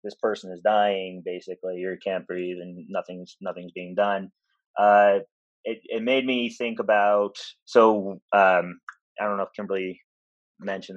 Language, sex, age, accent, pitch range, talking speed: English, male, 30-49, American, 95-120 Hz, 155 wpm